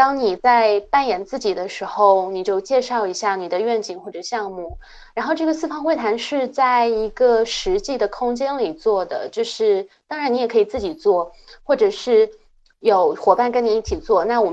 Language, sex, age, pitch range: Chinese, female, 20-39, 195-275 Hz